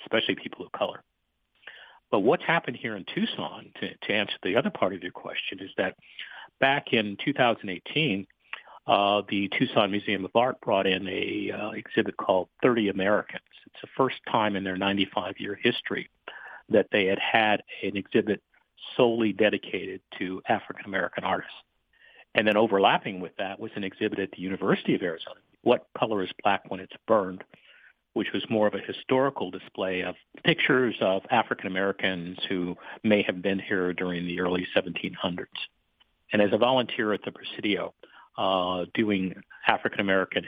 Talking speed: 160 wpm